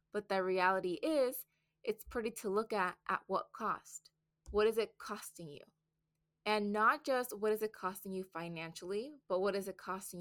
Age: 20-39